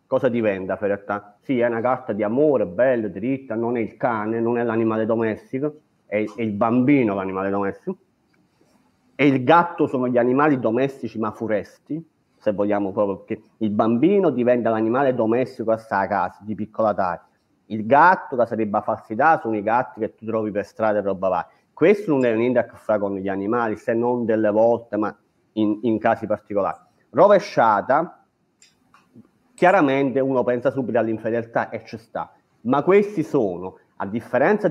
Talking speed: 170 wpm